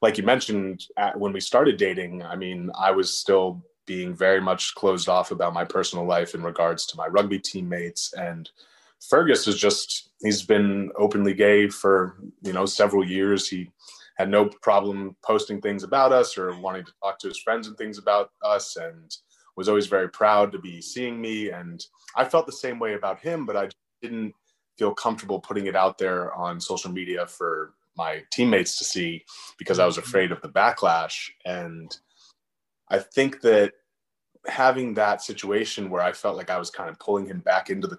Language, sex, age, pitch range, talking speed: English, male, 20-39, 90-105 Hz, 190 wpm